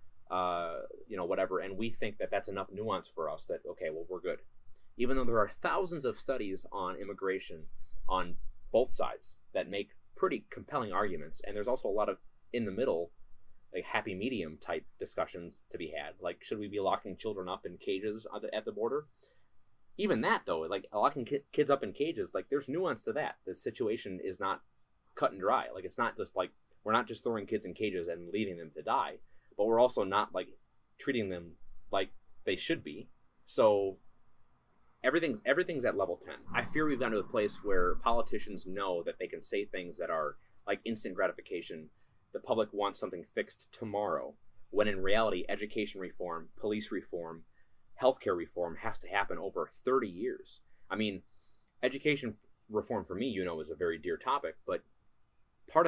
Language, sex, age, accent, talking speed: English, male, 20-39, American, 190 wpm